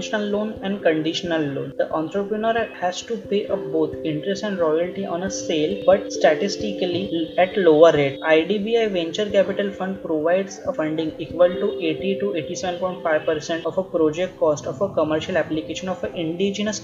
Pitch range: 165-205 Hz